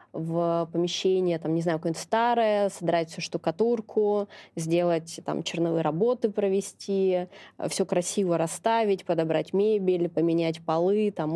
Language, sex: Russian, female